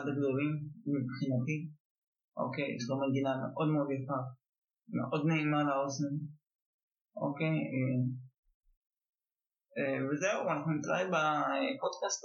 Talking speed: 110 wpm